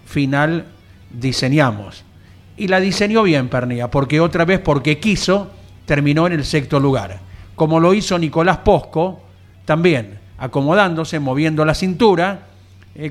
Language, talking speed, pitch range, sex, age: Spanish, 130 wpm, 130-170 Hz, male, 50-69